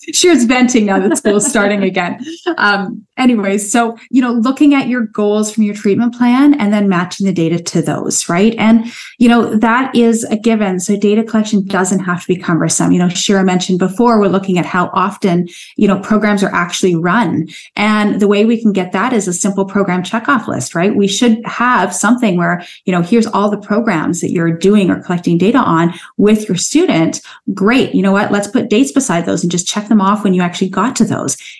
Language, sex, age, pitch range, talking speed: English, female, 30-49, 180-225 Hz, 215 wpm